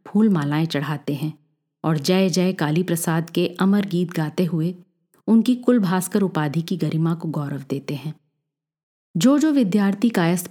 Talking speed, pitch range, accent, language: 155 wpm, 160-195 Hz, native, Hindi